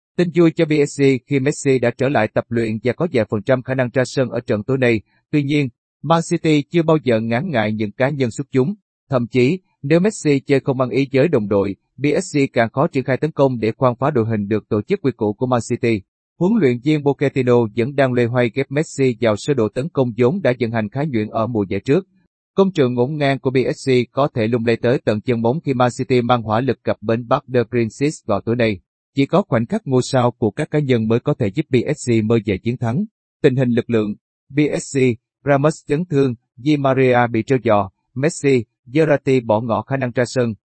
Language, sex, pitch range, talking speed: Vietnamese, male, 115-140 Hz, 240 wpm